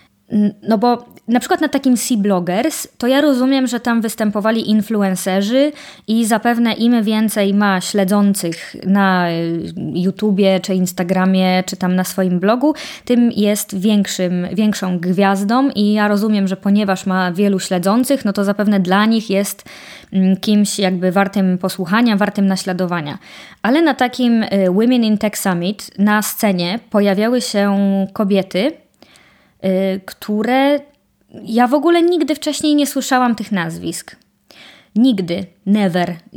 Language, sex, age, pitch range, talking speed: Polish, female, 20-39, 190-240 Hz, 125 wpm